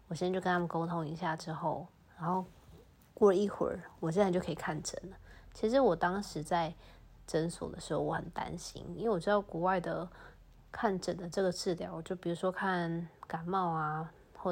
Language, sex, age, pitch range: Chinese, female, 20-39, 155-185 Hz